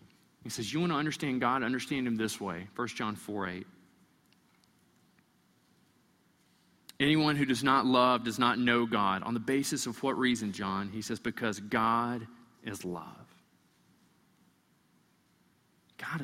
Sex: male